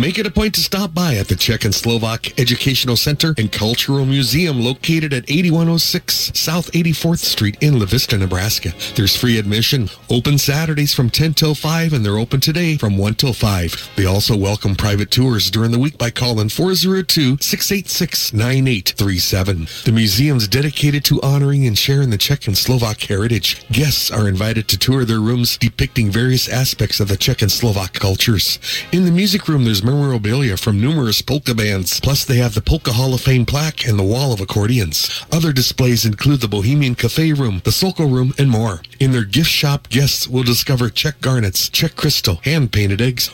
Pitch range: 110-145 Hz